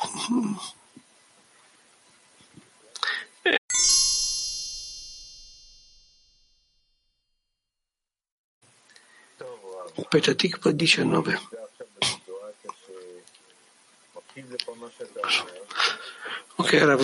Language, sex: Italian, male